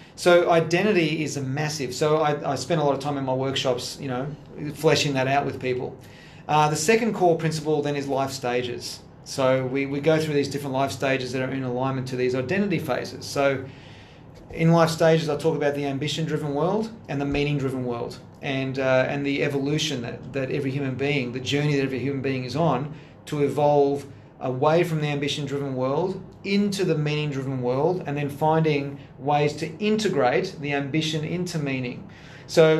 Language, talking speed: English, 190 wpm